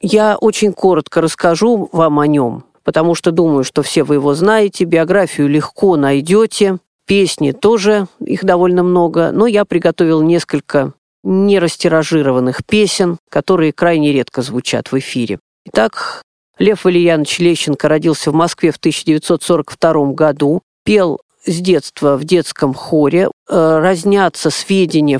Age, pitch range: 40-59, 150-195 Hz